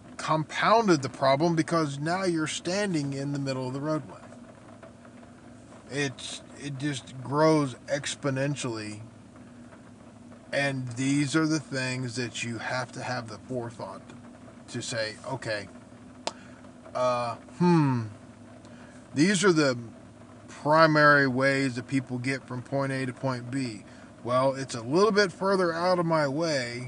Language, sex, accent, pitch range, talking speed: English, male, American, 120-150 Hz, 130 wpm